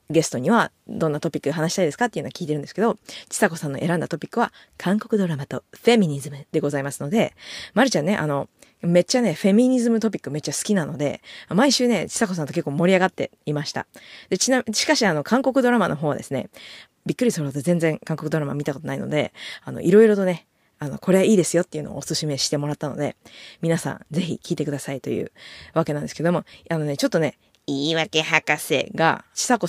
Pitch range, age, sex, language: 150-215 Hz, 20-39, female, Japanese